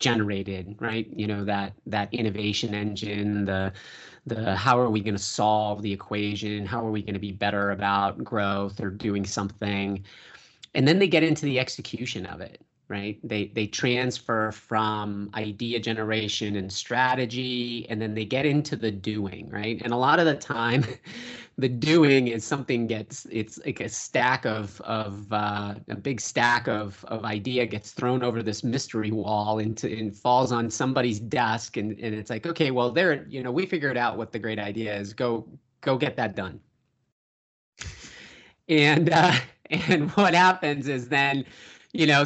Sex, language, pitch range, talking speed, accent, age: male, English, 105-130 Hz, 175 wpm, American, 30-49